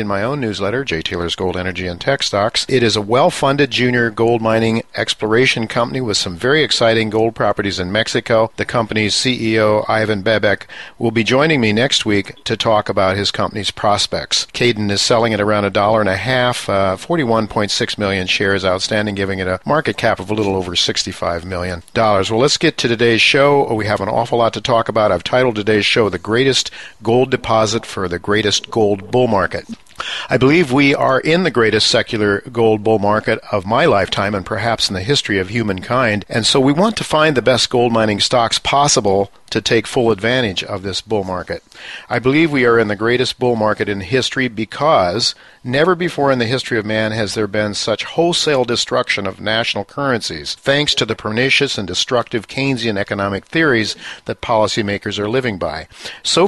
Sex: male